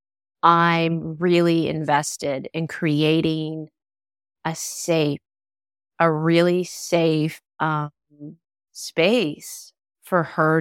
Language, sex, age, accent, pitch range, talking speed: English, female, 30-49, American, 145-165 Hz, 80 wpm